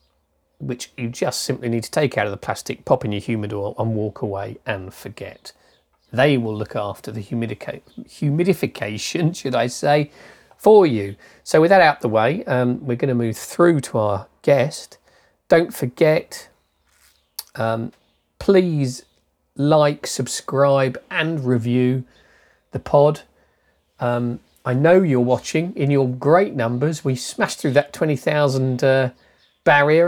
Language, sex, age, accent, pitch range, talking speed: English, male, 40-59, British, 115-145 Hz, 145 wpm